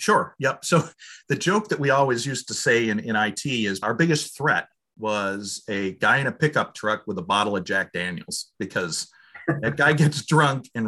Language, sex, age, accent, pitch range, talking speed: English, male, 40-59, American, 110-150 Hz, 205 wpm